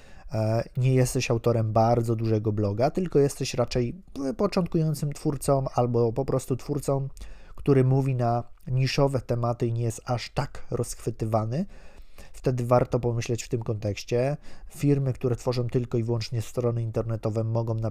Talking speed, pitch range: 140 wpm, 115-130 Hz